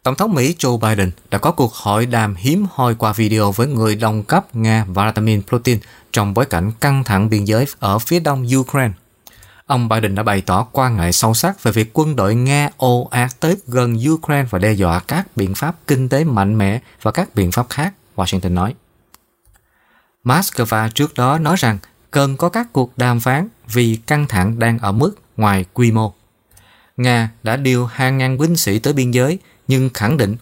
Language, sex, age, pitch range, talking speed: Vietnamese, male, 20-39, 110-140 Hz, 200 wpm